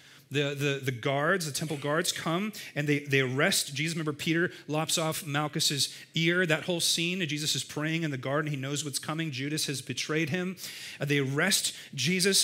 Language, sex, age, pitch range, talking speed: English, male, 30-49, 140-170 Hz, 190 wpm